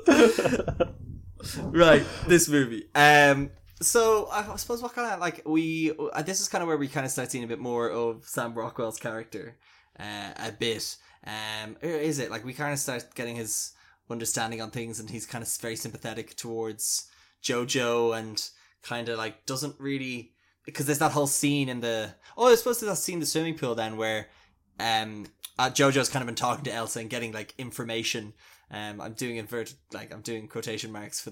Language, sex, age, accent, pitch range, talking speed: English, male, 10-29, Irish, 110-140 Hz, 195 wpm